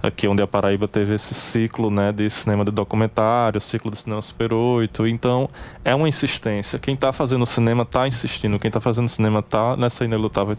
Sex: male